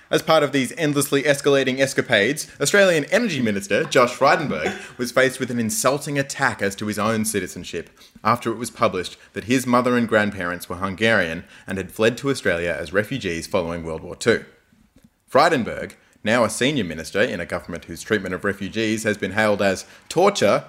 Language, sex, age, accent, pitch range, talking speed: English, male, 20-39, Australian, 95-120 Hz, 180 wpm